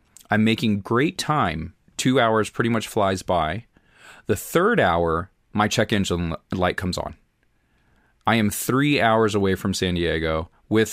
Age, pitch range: 30-49, 95-110 Hz